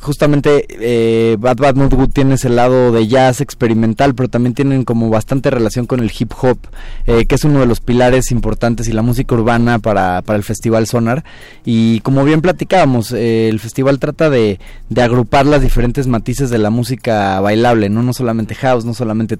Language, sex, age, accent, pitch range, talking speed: Spanish, male, 20-39, Mexican, 110-130 Hz, 190 wpm